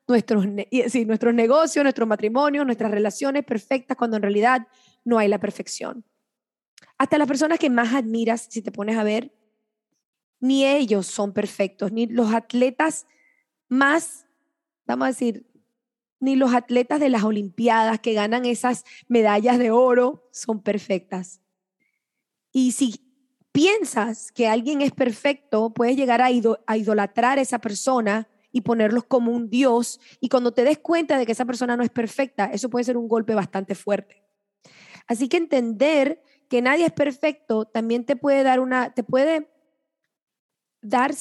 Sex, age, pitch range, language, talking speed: female, 20-39, 220-270 Hz, English, 155 wpm